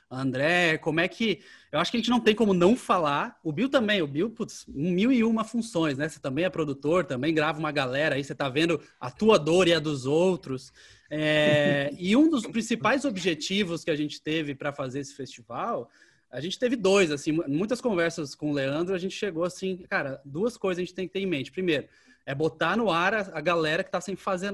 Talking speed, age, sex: 225 wpm, 20-39, male